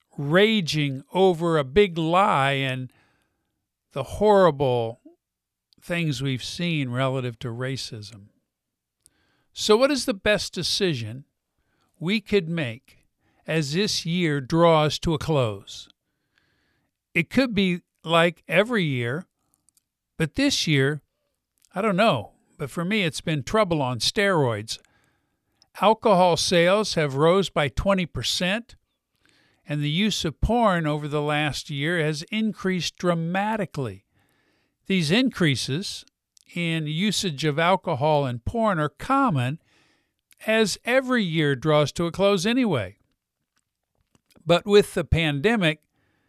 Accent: American